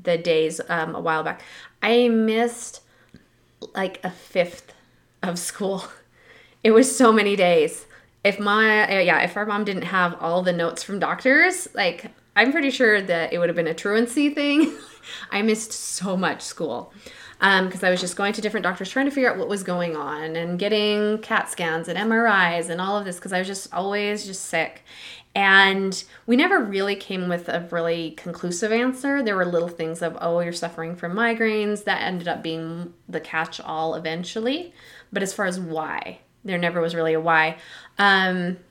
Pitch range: 170-215 Hz